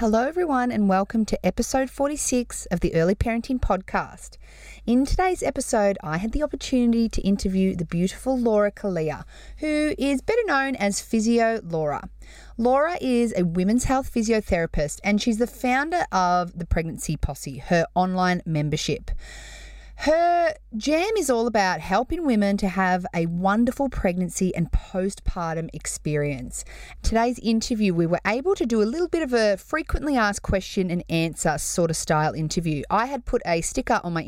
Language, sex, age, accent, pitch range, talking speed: English, female, 30-49, Australian, 175-245 Hz, 160 wpm